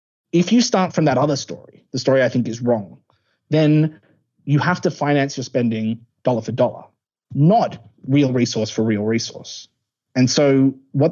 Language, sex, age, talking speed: English, male, 20-39, 175 wpm